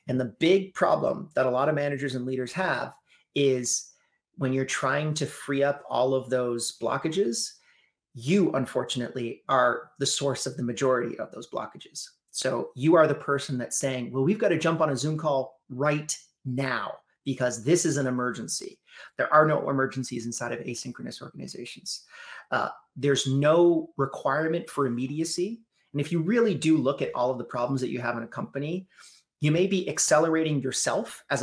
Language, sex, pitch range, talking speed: English, male, 130-155 Hz, 180 wpm